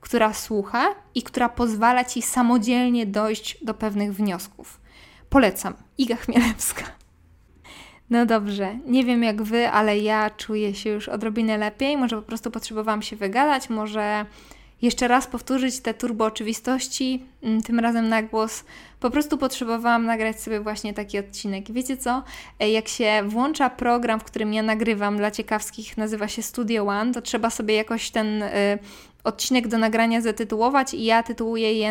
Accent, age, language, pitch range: native, 20-39, Polish, 215-250 Hz